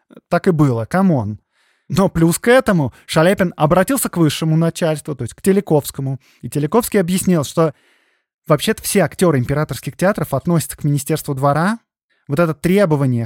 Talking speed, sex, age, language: 150 wpm, male, 20-39, Russian